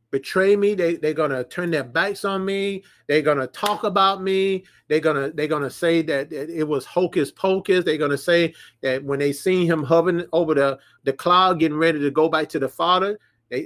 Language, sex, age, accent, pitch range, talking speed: English, male, 30-49, American, 120-170 Hz, 210 wpm